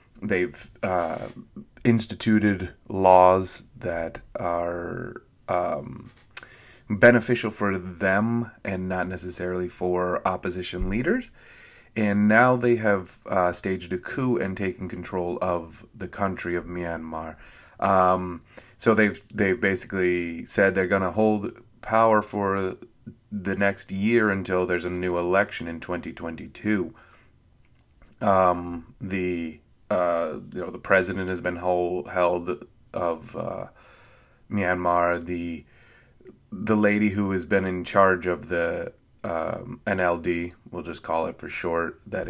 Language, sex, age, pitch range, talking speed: English, male, 30-49, 90-105 Hz, 125 wpm